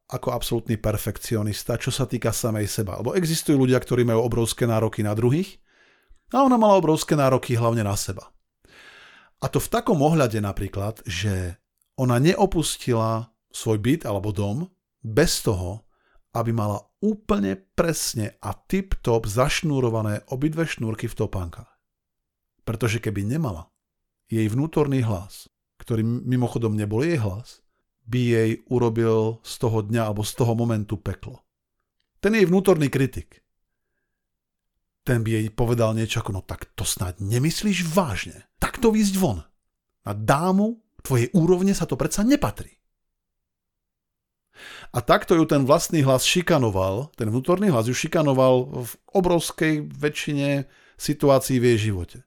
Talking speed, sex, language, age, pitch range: 140 wpm, male, Slovak, 50-69, 110-150 Hz